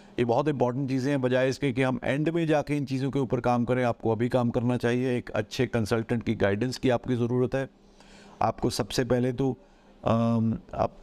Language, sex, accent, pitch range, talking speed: Hindi, male, native, 120-140 Hz, 205 wpm